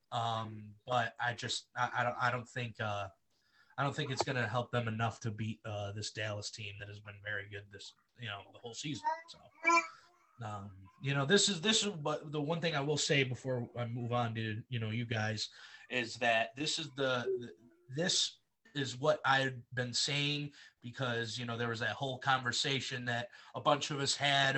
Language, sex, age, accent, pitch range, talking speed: English, male, 20-39, American, 115-145 Hz, 210 wpm